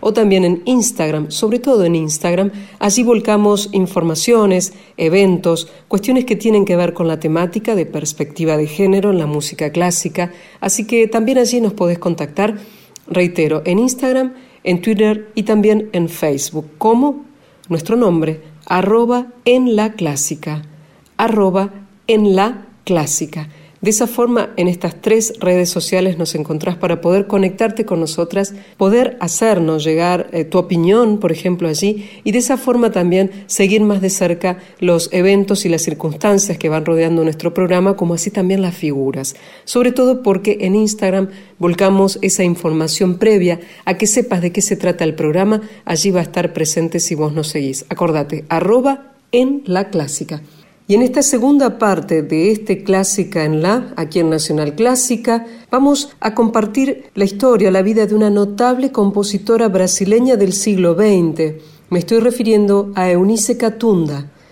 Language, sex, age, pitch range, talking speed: Spanish, female, 40-59, 170-220 Hz, 160 wpm